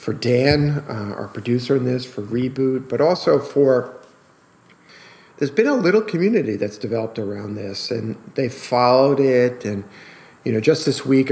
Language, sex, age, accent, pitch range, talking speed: English, male, 50-69, American, 110-125 Hz, 165 wpm